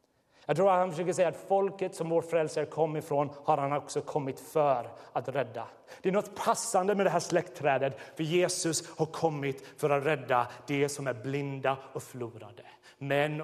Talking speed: 190 wpm